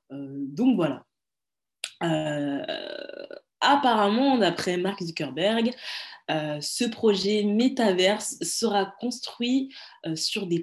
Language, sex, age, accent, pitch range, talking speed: French, female, 20-39, French, 150-200 Hz, 95 wpm